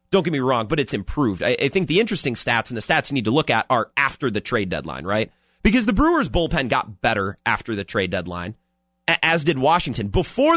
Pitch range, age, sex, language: 105-175 Hz, 30-49, male, English